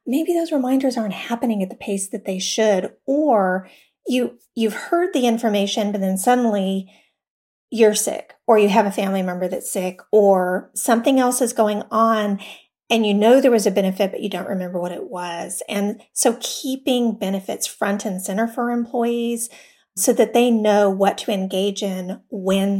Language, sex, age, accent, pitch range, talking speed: English, female, 40-59, American, 195-235 Hz, 180 wpm